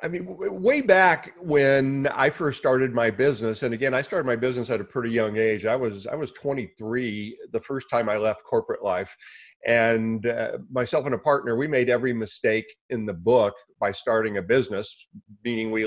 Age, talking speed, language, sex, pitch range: 40-59, 195 wpm, English, male, 110-135 Hz